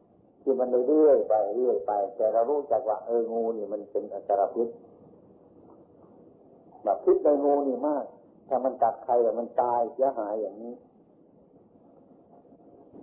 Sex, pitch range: male, 110-145 Hz